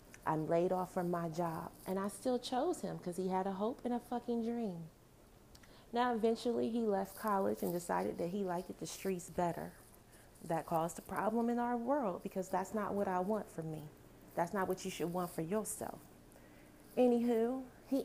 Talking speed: 195 wpm